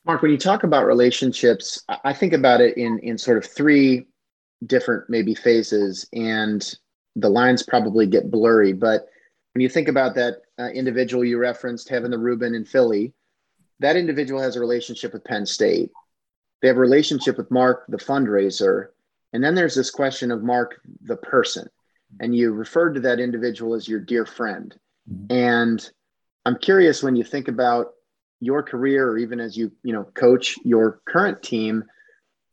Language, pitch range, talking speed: English, 115-140 Hz, 170 wpm